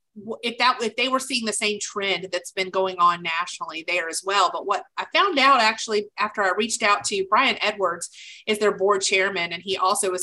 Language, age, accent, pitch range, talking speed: English, 30-49, American, 185-215 Hz, 225 wpm